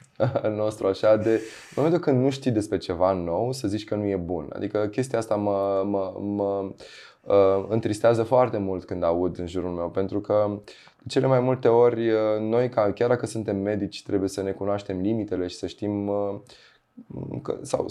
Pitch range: 90-110 Hz